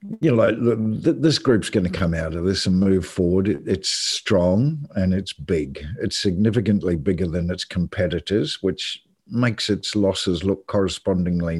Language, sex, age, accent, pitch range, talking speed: English, male, 50-69, Australian, 90-105 Hz, 155 wpm